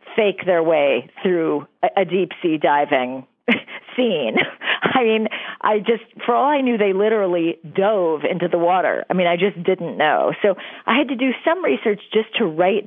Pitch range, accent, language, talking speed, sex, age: 165-215 Hz, American, English, 180 wpm, female, 40-59